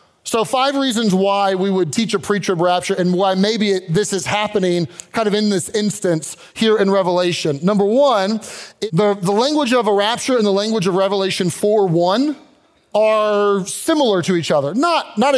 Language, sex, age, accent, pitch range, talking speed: English, male, 30-49, American, 185-225 Hz, 185 wpm